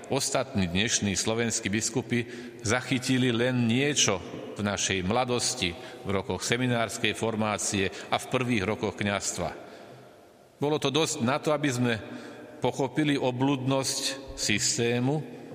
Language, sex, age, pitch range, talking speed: Slovak, male, 40-59, 105-130 Hz, 110 wpm